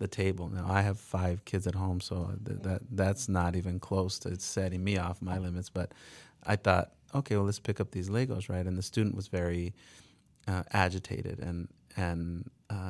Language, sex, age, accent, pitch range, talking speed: English, male, 30-49, American, 90-105 Hz, 195 wpm